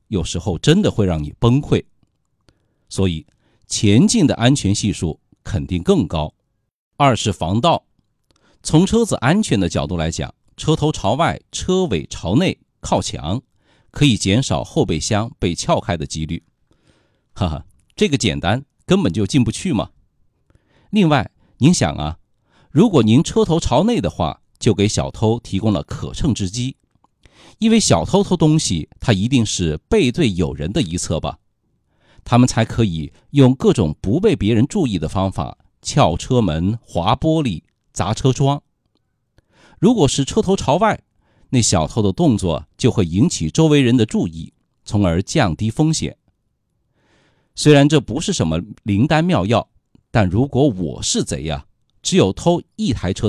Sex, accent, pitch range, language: male, native, 95-140 Hz, Chinese